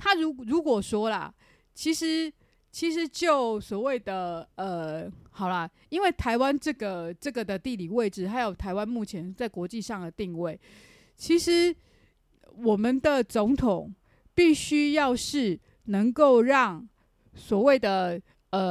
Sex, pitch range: female, 195-280 Hz